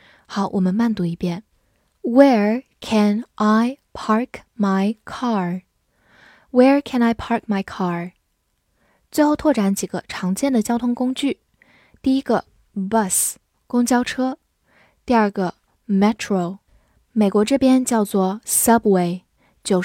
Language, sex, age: Chinese, female, 10-29